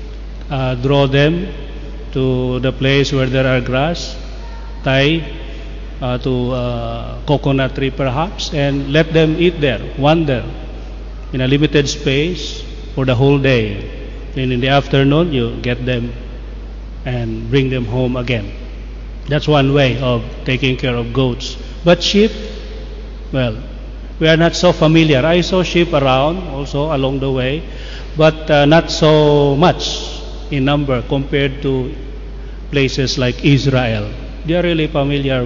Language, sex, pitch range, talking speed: Indonesian, male, 130-155 Hz, 140 wpm